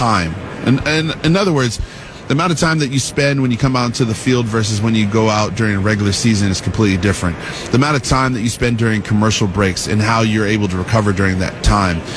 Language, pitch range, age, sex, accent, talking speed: English, 110-140 Hz, 30-49, male, American, 250 wpm